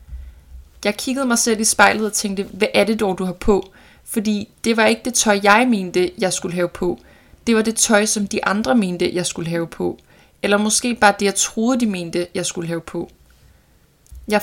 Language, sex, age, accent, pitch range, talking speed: Danish, female, 20-39, native, 185-220 Hz, 215 wpm